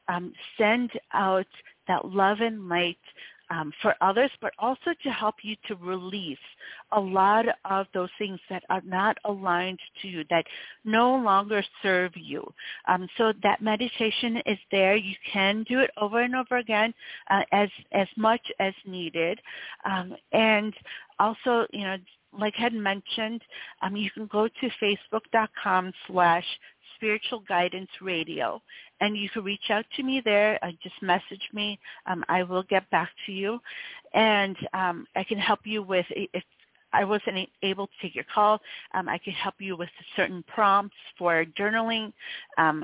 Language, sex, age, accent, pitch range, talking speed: English, female, 40-59, American, 180-215 Hz, 160 wpm